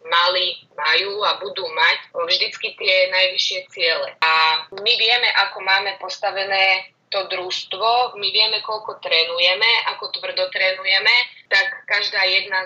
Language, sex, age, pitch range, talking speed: Slovak, female, 20-39, 180-280 Hz, 130 wpm